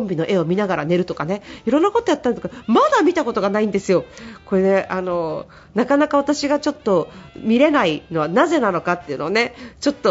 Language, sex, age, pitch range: Japanese, female, 40-59, 190-280 Hz